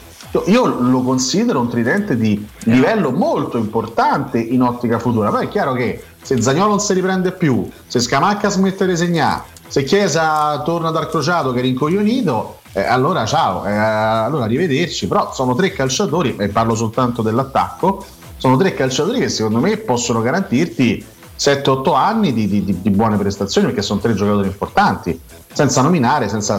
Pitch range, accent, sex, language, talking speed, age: 105-130 Hz, native, male, Italian, 165 wpm, 40-59